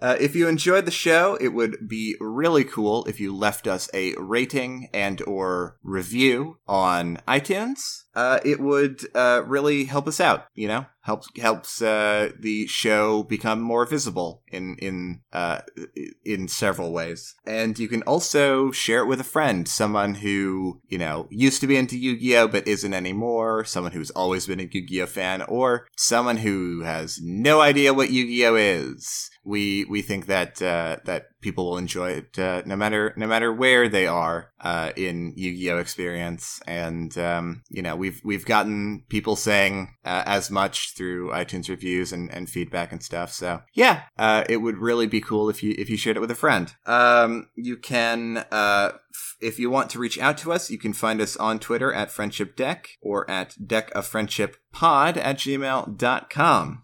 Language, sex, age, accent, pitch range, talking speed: English, male, 30-49, American, 95-120 Hz, 180 wpm